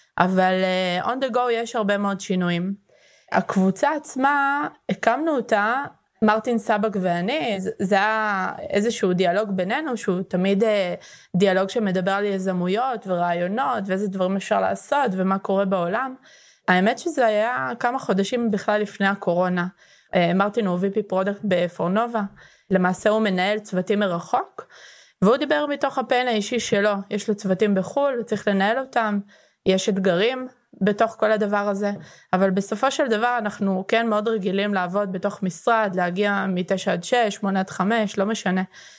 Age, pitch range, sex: 20-39, 190-230 Hz, female